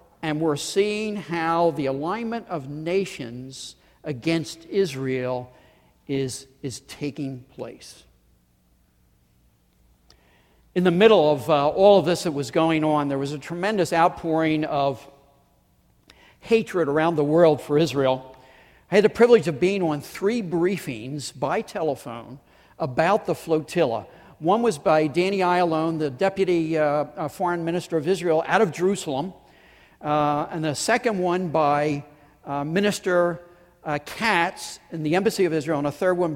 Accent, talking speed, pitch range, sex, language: American, 140 wpm, 140-175 Hz, male, English